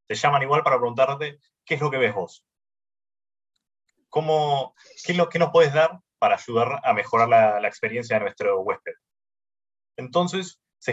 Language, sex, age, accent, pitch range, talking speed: Spanish, male, 20-39, Argentinian, 125-180 Hz, 170 wpm